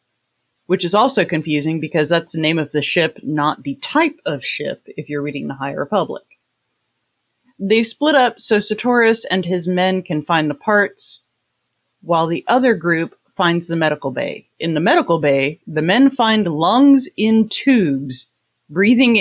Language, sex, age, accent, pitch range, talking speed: English, female, 30-49, American, 150-205 Hz, 165 wpm